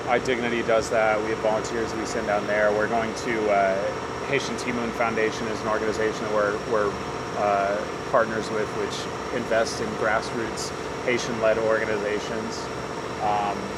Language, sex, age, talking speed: English, male, 20-39, 150 wpm